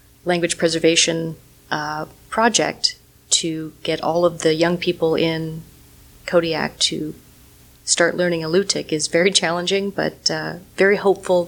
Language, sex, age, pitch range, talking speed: English, female, 30-49, 155-170 Hz, 125 wpm